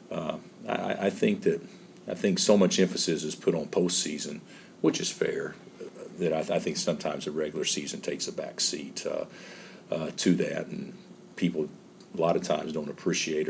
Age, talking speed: 50-69, 185 wpm